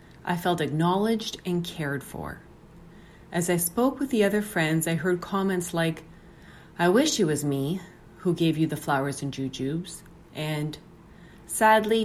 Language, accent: English, American